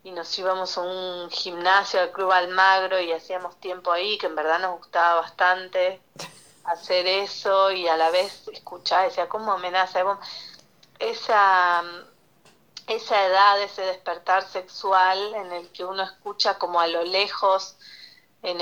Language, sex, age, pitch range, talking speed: Spanish, female, 30-49, 180-205 Hz, 145 wpm